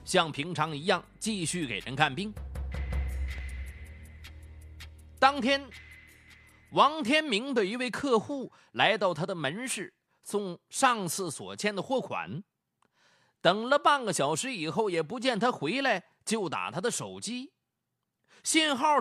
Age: 30-49